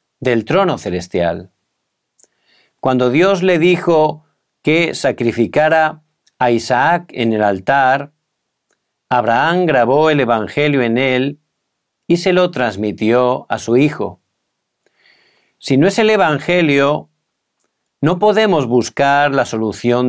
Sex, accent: male, Spanish